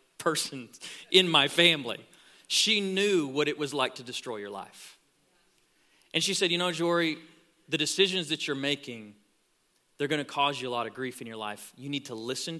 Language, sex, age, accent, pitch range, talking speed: English, male, 40-59, American, 150-200 Hz, 195 wpm